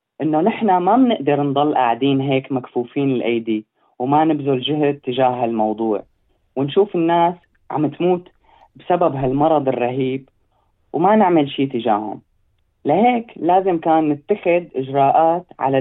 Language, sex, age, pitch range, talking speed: Arabic, female, 30-49, 130-165 Hz, 120 wpm